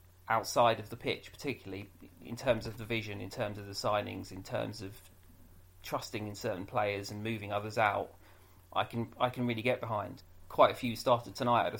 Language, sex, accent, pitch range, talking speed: English, male, British, 100-120 Hz, 205 wpm